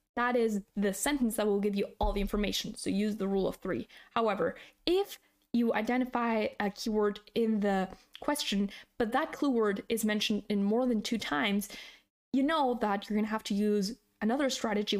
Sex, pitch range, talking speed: female, 210-255 Hz, 190 wpm